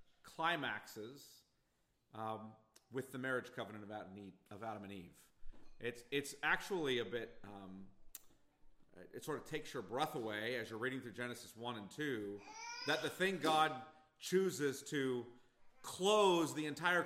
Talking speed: 140 wpm